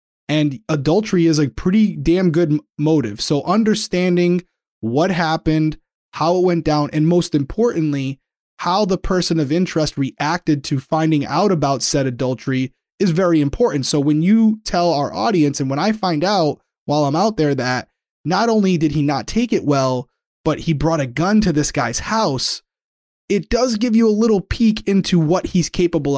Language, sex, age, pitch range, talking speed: English, male, 20-39, 145-180 Hz, 180 wpm